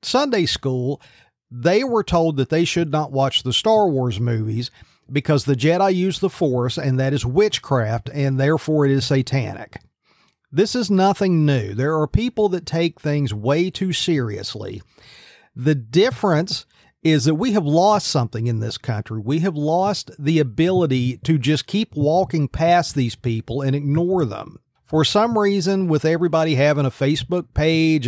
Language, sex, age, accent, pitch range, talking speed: English, male, 40-59, American, 135-180 Hz, 165 wpm